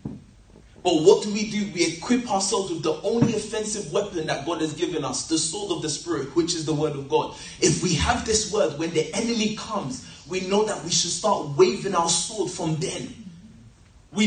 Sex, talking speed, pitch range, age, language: male, 210 wpm, 170-215 Hz, 20-39, English